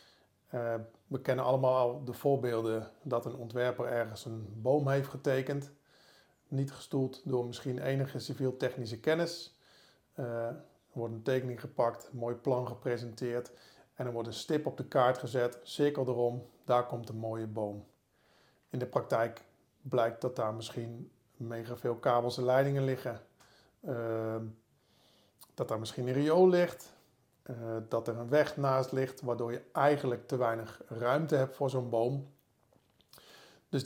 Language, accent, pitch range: Dutch, Dutch, 120-140 Hz